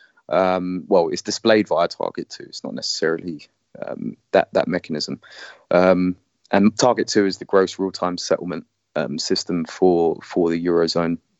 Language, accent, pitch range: English, British, 90-110 Hz